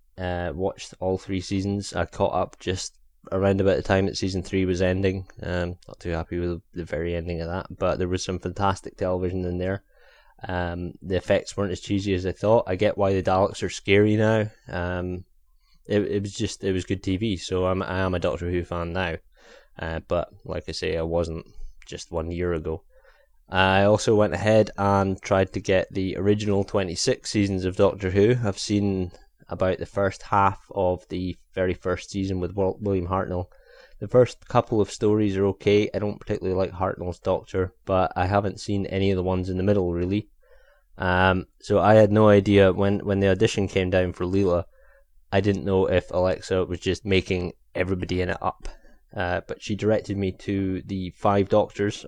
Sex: male